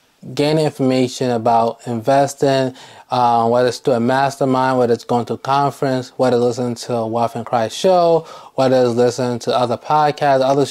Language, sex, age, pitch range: English, male, 20-39, 120-135 Hz